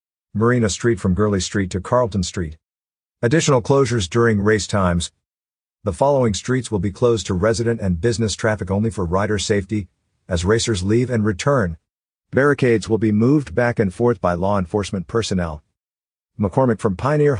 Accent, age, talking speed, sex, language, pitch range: American, 50-69, 160 wpm, male, English, 95-125 Hz